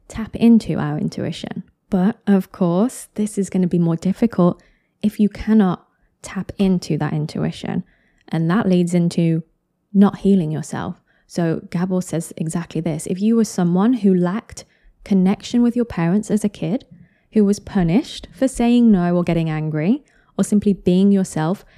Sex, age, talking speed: female, 20-39, 165 wpm